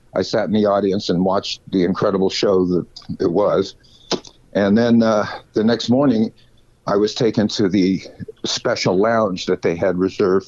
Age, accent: 60-79, American